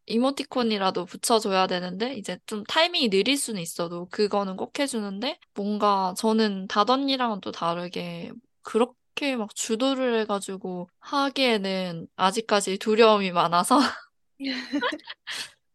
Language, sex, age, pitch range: Korean, female, 20-39, 190-255 Hz